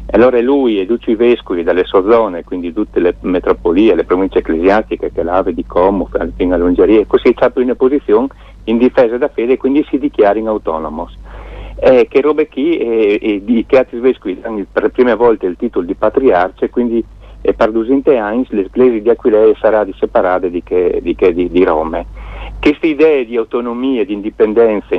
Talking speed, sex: 185 wpm, male